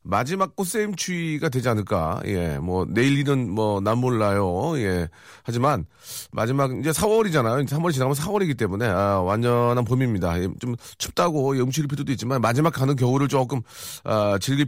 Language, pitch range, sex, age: Korean, 105-145 Hz, male, 40-59